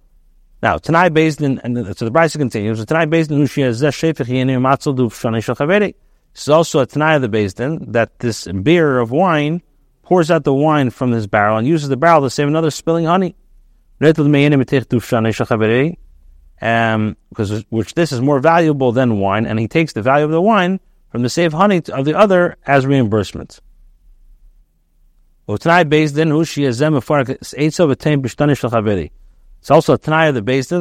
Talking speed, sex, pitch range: 150 wpm, male, 115-160 Hz